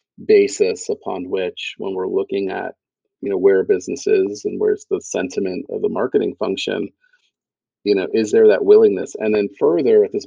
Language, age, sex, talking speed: English, 40-59, male, 175 wpm